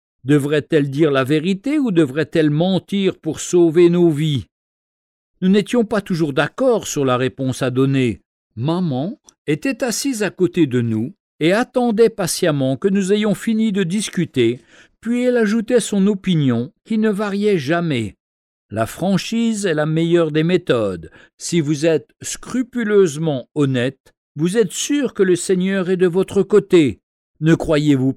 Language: French